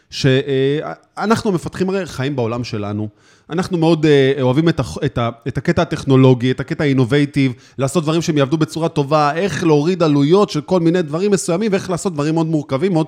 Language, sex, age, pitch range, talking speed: Hebrew, male, 20-39, 130-185 Hz, 180 wpm